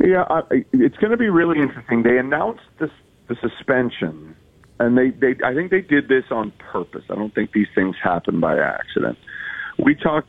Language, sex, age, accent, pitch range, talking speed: English, male, 40-59, American, 95-130 Hz, 190 wpm